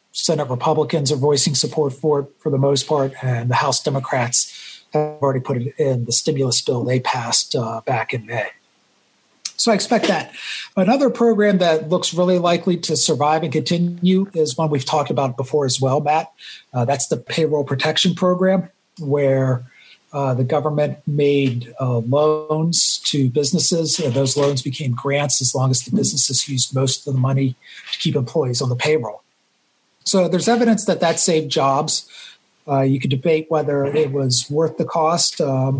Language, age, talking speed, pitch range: English, 50-69, 180 wpm, 135-165 Hz